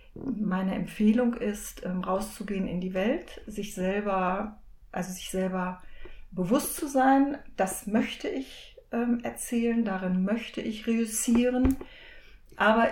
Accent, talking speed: German, 100 wpm